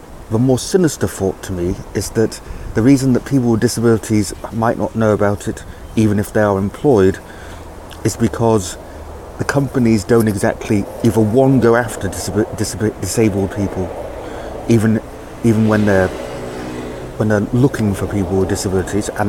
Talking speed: 155 wpm